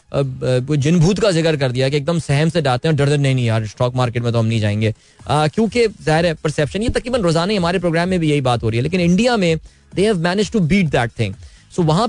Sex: male